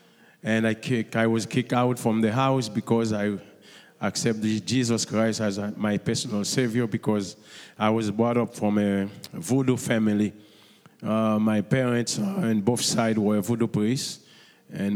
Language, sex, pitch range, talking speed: English, male, 110-125 Hz, 155 wpm